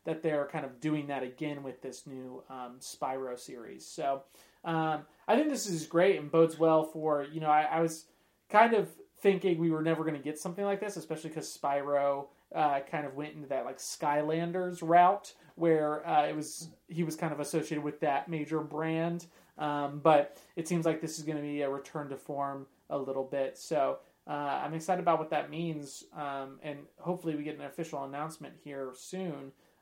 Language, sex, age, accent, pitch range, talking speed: English, male, 30-49, American, 145-165 Hz, 205 wpm